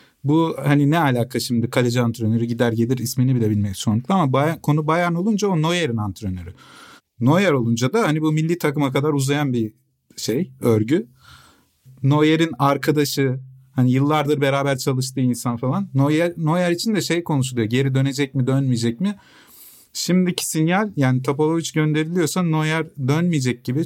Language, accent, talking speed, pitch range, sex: Turkish, native, 150 wpm, 125-155 Hz, male